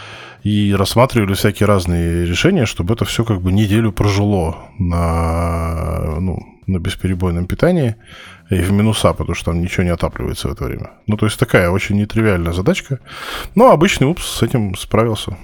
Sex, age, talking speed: male, 20-39, 160 wpm